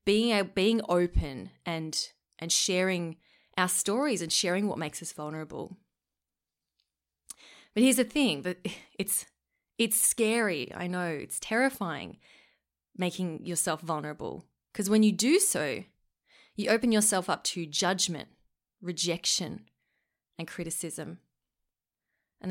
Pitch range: 160-200 Hz